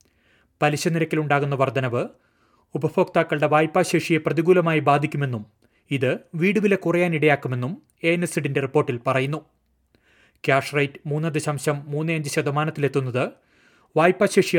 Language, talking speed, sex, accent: Malayalam, 90 wpm, male, native